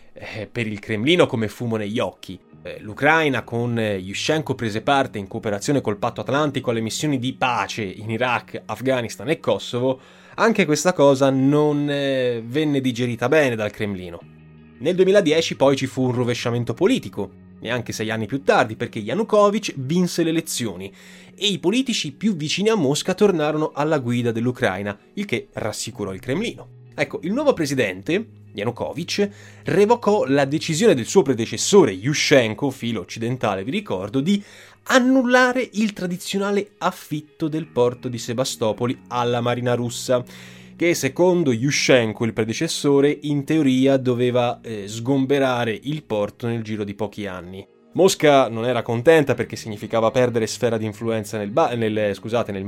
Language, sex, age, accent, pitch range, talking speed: Italian, male, 20-39, native, 110-155 Hz, 145 wpm